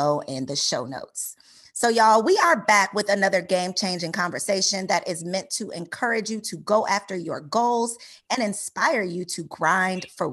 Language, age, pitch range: English, 30-49, 170-230 Hz